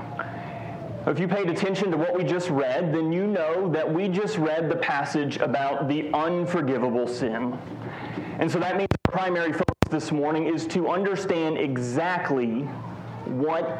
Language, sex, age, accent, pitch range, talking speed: English, male, 30-49, American, 140-180 Hz, 155 wpm